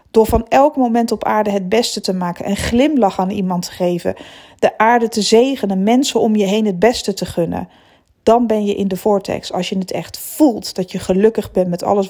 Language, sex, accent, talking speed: Dutch, female, Dutch, 225 wpm